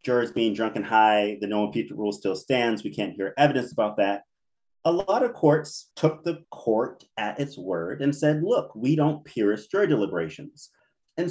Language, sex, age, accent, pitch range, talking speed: English, male, 30-49, American, 110-155 Hz, 190 wpm